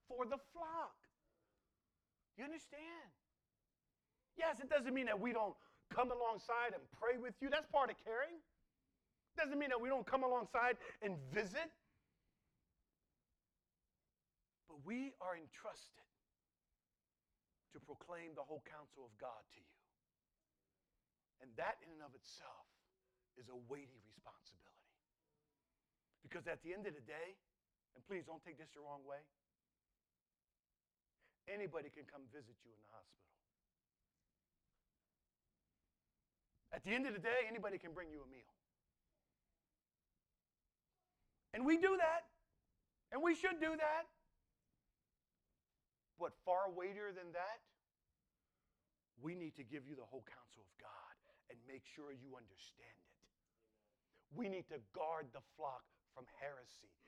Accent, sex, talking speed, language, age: American, male, 135 wpm, English, 40-59